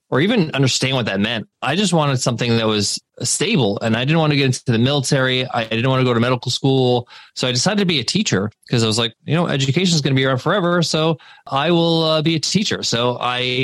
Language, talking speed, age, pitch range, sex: English, 260 wpm, 20-39, 120-150 Hz, male